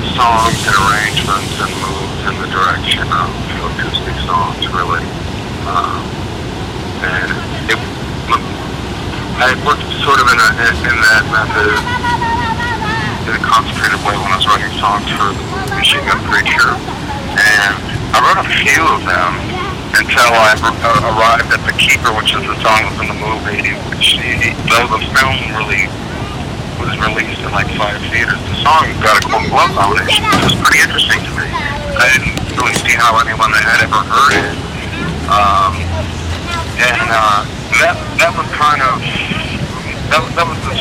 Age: 50-69